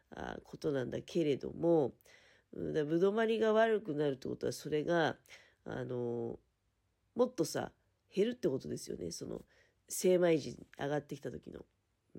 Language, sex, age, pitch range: Japanese, female, 40-59, 150-230 Hz